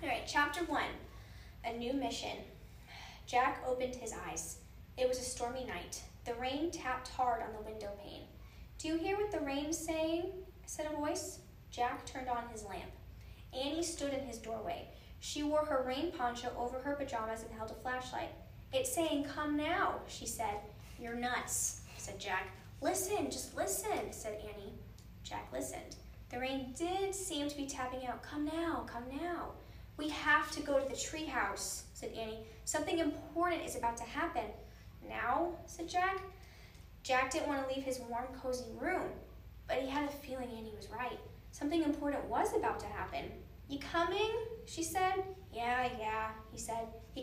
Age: 10-29